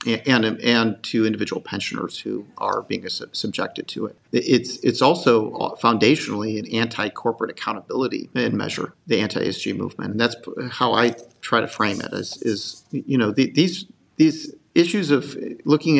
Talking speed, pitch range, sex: 165 wpm, 120-145 Hz, male